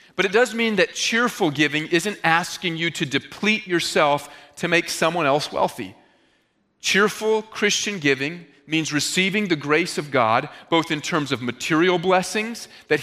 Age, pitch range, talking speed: 40-59, 145-180 Hz, 155 wpm